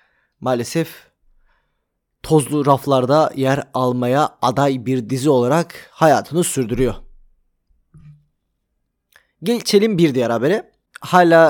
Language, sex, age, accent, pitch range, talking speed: Turkish, male, 30-49, native, 135-180 Hz, 85 wpm